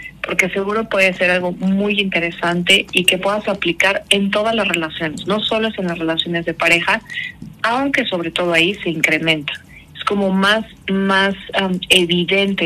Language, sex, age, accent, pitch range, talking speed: Spanish, female, 40-59, Mexican, 175-205 Hz, 155 wpm